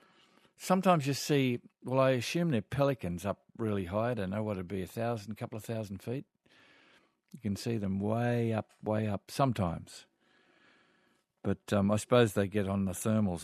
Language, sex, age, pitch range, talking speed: English, male, 50-69, 100-120 Hz, 190 wpm